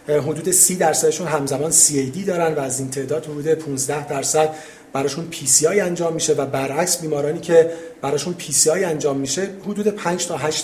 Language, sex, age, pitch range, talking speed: Persian, male, 40-59, 145-170 Hz, 165 wpm